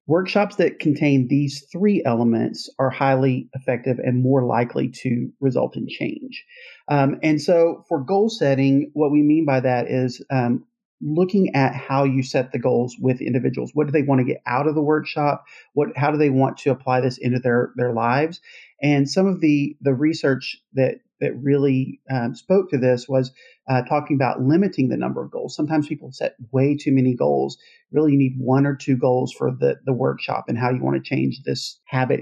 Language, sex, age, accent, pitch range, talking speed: English, male, 40-59, American, 125-150 Hz, 200 wpm